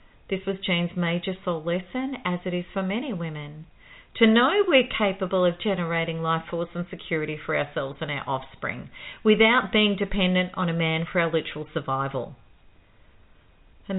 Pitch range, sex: 155-225 Hz, female